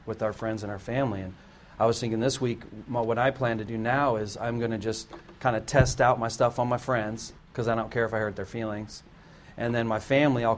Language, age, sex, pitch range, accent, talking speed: English, 40-59, male, 105-125 Hz, American, 260 wpm